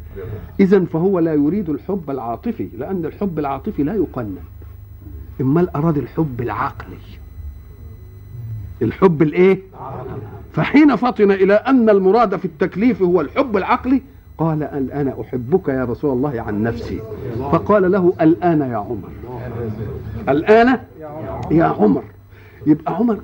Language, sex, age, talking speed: Arabic, male, 50-69, 120 wpm